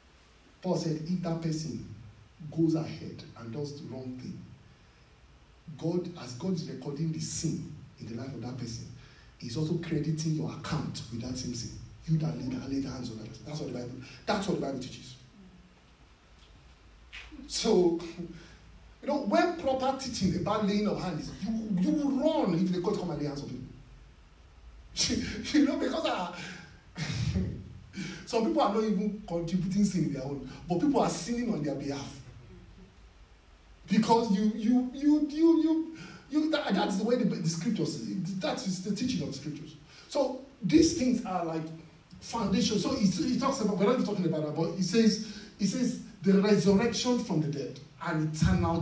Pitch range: 135-215 Hz